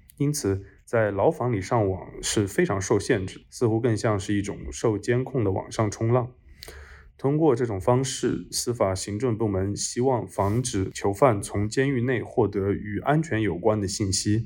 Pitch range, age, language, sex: 95-125 Hz, 20-39, Chinese, male